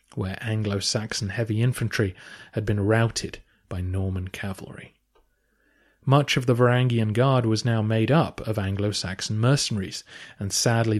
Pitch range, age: 100-135 Hz, 30-49